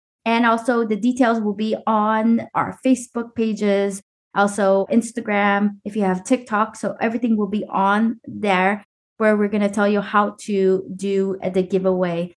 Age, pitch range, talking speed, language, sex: 20-39, 195-235 Hz, 160 wpm, English, female